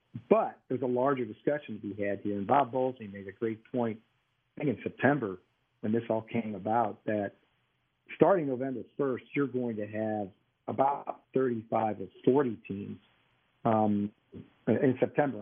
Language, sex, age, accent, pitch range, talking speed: English, male, 50-69, American, 110-135 Hz, 160 wpm